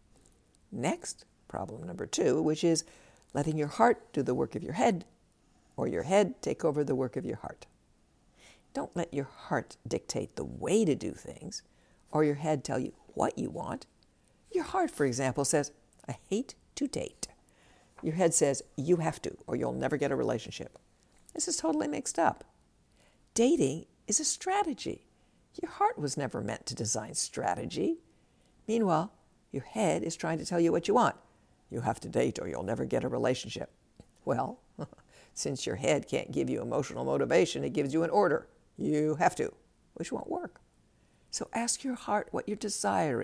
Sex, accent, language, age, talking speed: female, American, English, 60-79, 180 wpm